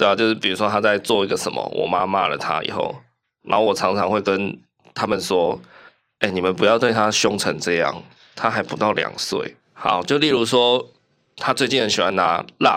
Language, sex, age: Chinese, male, 20-39